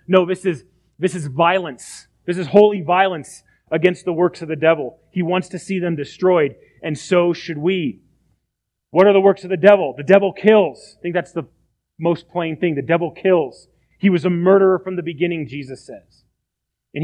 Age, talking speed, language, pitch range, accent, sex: 30-49, 195 wpm, English, 155-195 Hz, American, male